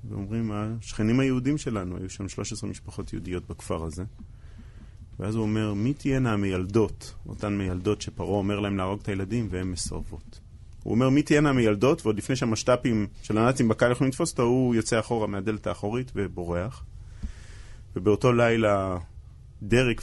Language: Hebrew